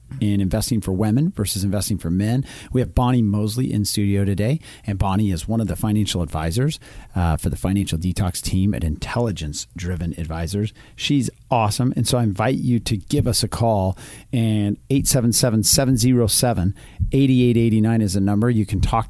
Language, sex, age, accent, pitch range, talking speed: English, male, 40-59, American, 105-125 Hz, 175 wpm